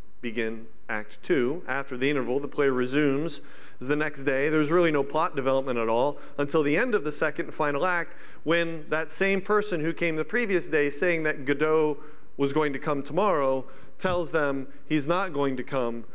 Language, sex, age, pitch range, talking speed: English, male, 40-59, 130-160 Hz, 195 wpm